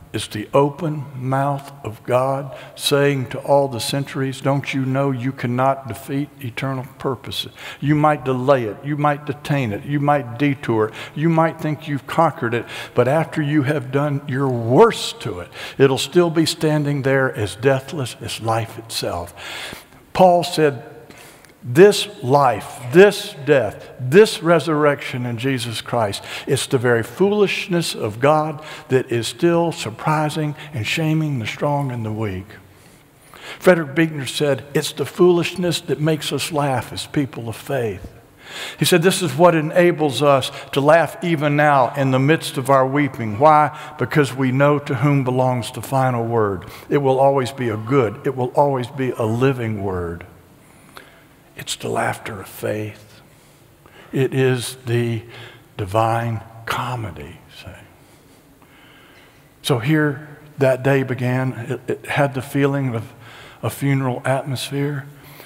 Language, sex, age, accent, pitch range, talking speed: English, male, 60-79, American, 125-150 Hz, 150 wpm